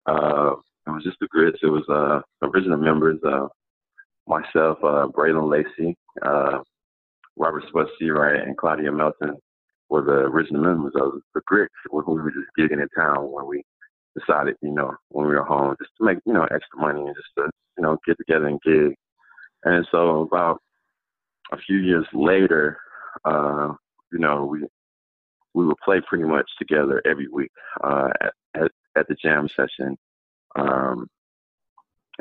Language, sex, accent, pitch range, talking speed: English, male, American, 75-80 Hz, 160 wpm